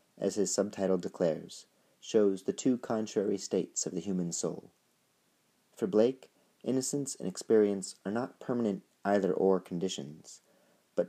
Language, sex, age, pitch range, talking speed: English, male, 40-59, 90-105 Hz, 130 wpm